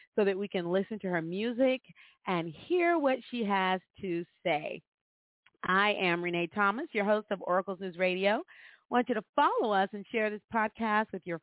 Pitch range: 180-220 Hz